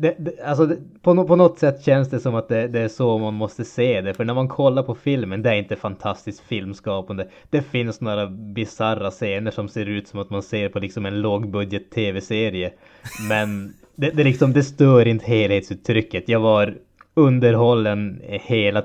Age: 20-39